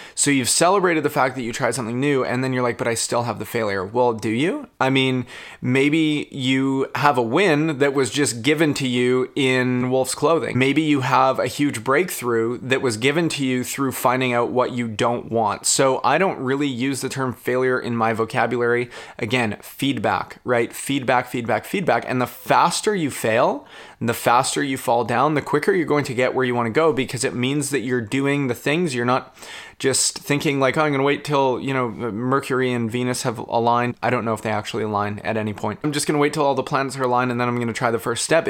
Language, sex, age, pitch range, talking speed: English, male, 20-39, 120-135 Hz, 230 wpm